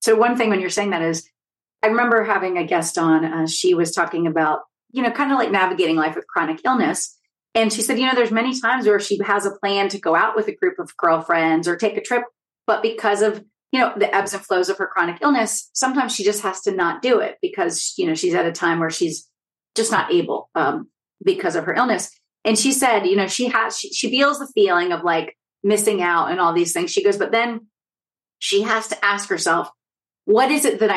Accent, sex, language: American, female, English